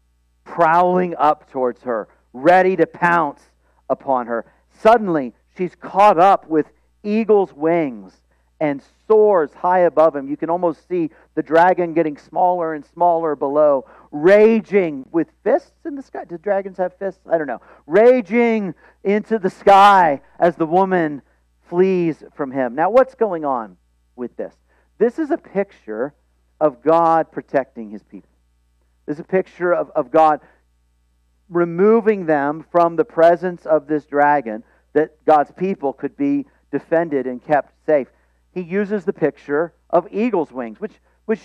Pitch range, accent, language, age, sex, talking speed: 130-190 Hz, American, English, 50-69, male, 150 wpm